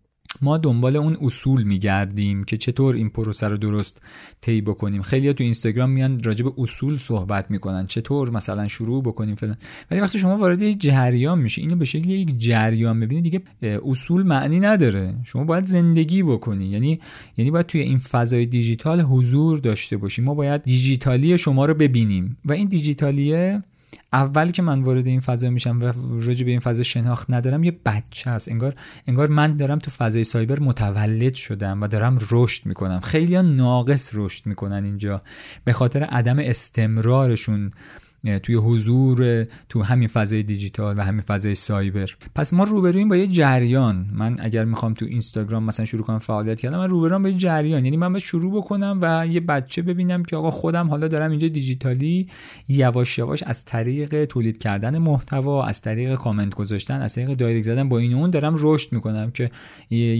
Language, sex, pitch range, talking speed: Persian, male, 110-150 Hz, 175 wpm